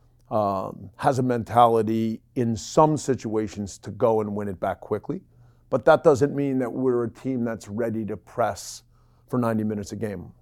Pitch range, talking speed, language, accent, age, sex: 110-130 Hz, 180 wpm, English, American, 50-69, male